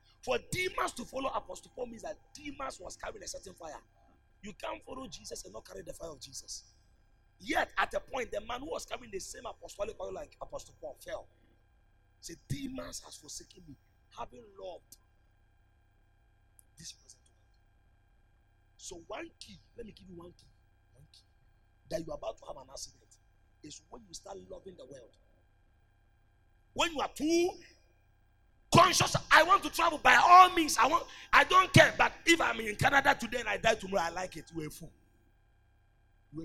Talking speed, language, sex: 185 wpm, English, male